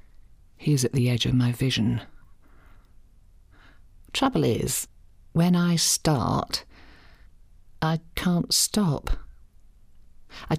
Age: 50-69